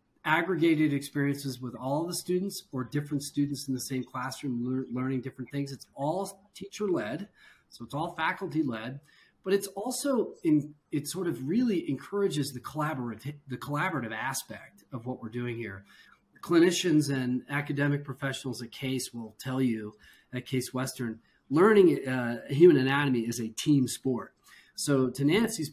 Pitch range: 120-155 Hz